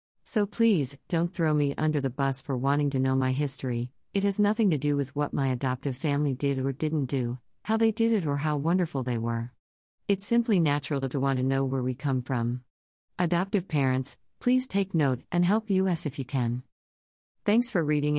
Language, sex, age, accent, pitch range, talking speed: English, female, 50-69, American, 130-160 Hz, 205 wpm